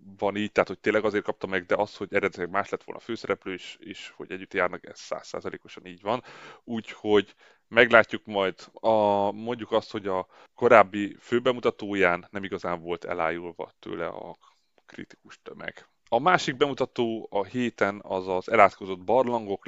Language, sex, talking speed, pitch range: Hungarian, male, 160 wpm, 95-110 Hz